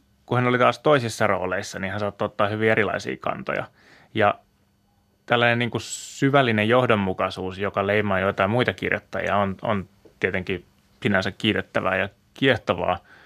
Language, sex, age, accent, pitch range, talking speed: Finnish, male, 20-39, native, 95-110 Hz, 140 wpm